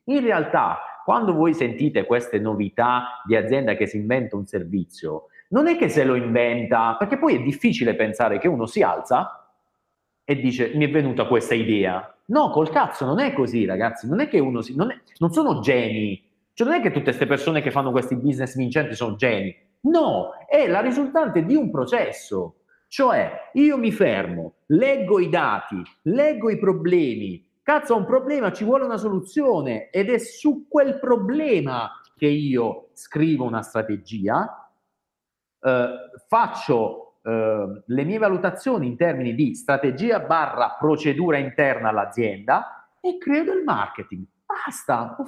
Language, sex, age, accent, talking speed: Italian, male, 40-59, native, 160 wpm